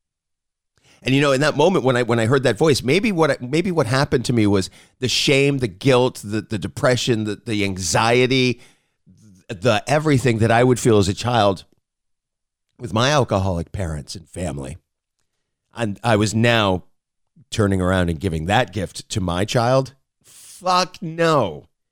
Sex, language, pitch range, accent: male, English, 90-125 Hz, American